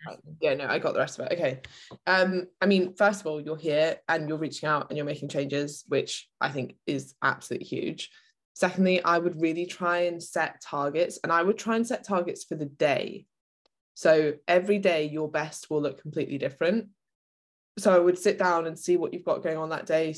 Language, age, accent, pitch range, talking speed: English, 20-39, British, 145-170 Hz, 215 wpm